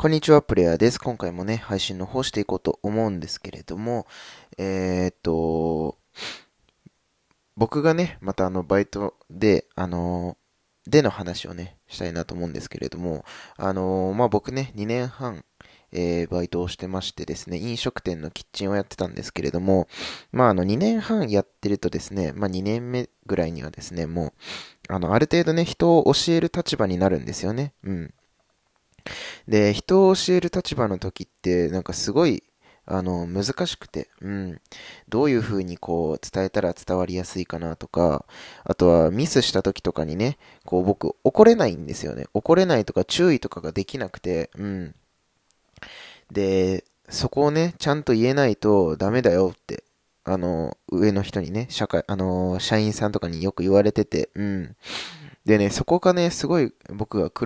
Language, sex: Japanese, male